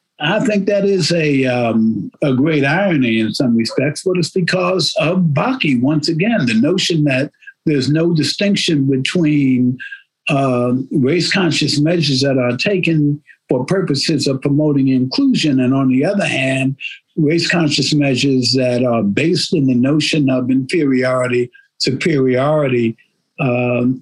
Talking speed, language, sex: 135 wpm, English, male